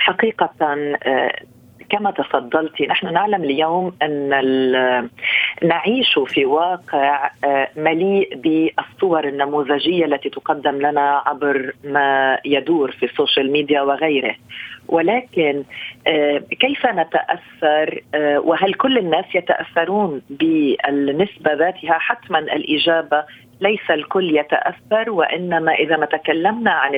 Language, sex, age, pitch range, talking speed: Arabic, female, 40-59, 150-180 Hz, 95 wpm